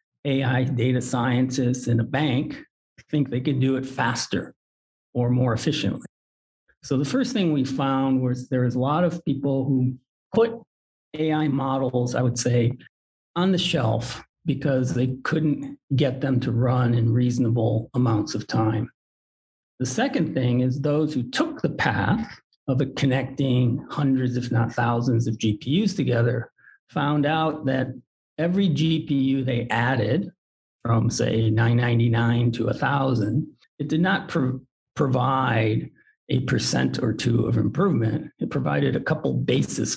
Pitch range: 120-145 Hz